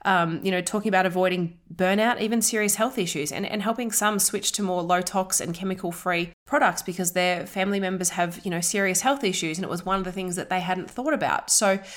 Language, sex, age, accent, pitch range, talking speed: English, female, 20-39, Australian, 160-200 Hz, 235 wpm